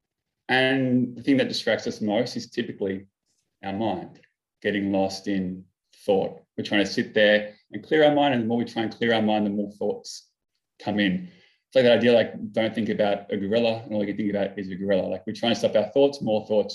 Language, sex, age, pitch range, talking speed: English, male, 20-39, 100-115 Hz, 235 wpm